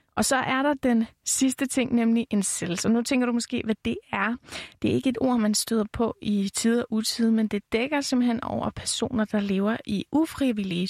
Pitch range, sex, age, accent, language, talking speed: 205-245 Hz, female, 30-49, native, Danish, 220 wpm